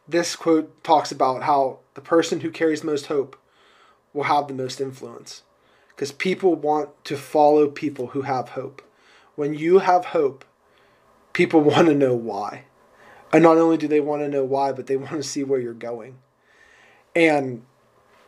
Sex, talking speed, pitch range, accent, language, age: male, 170 wpm, 135-155 Hz, American, English, 20-39